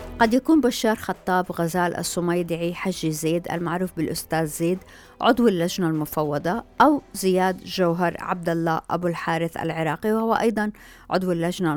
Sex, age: female, 50-69